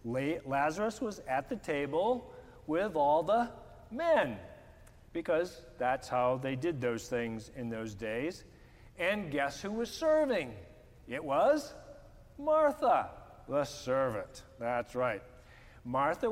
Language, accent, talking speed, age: English, American, 120 wpm, 50-69